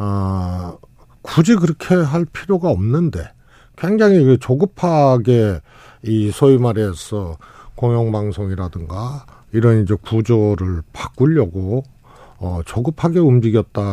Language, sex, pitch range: Korean, male, 100-135 Hz